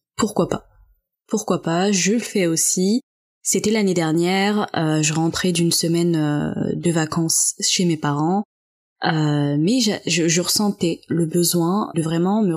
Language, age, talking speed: French, 20-39, 155 wpm